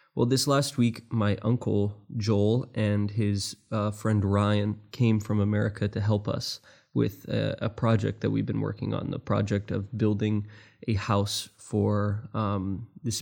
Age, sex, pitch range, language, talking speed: 20-39, male, 105-110 Hz, English, 165 wpm